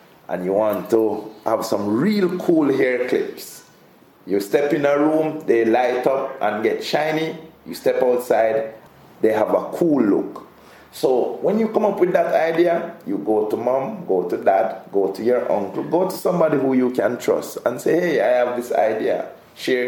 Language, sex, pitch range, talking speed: English, male, 125-210 Hz, 190 wpm